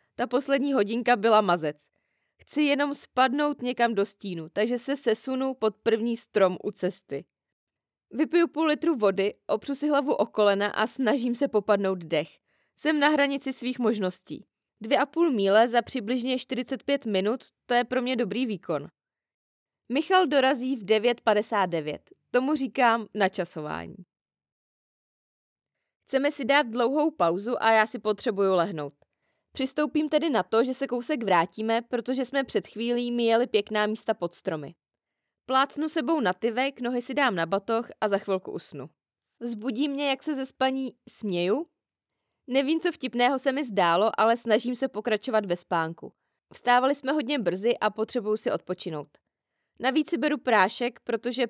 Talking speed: 155 wpm